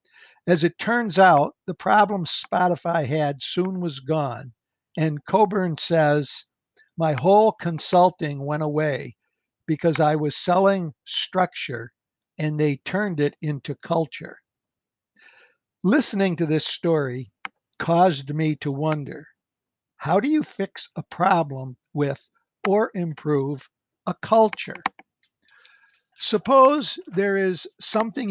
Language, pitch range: English, 150-190 Hz